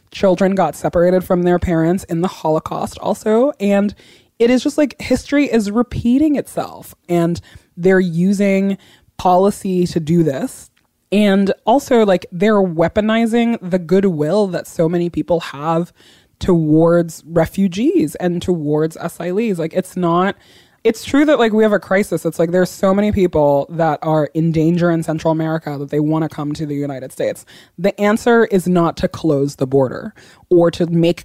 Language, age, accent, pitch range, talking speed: English, 20-39, American, 160-195 Hz, 165 wpm